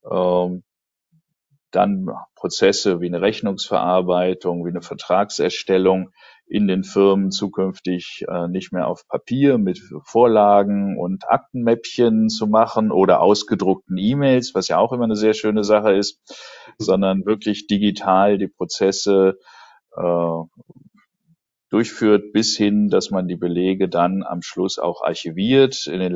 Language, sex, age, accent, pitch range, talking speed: German, male, 50-69, German, 90-105 Hz, 120 wpm